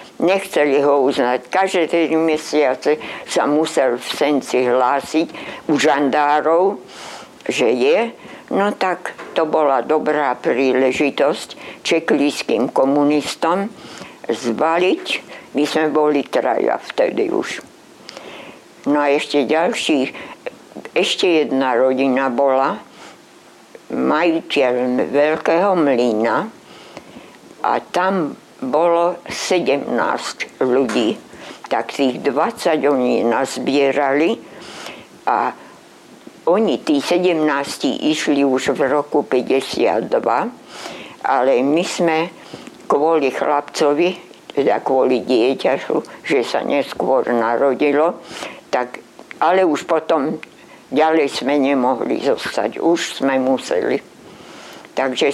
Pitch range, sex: 135-160 Hz, female